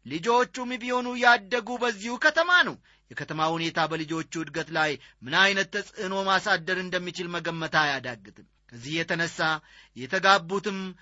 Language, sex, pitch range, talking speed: Amharic, male, 155-220 Hz, 115 wpm